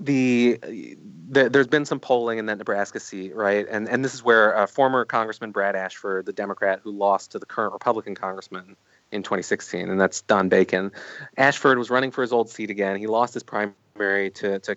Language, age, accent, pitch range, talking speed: English, 30-49, American, 100-120 Hz, 205 wpm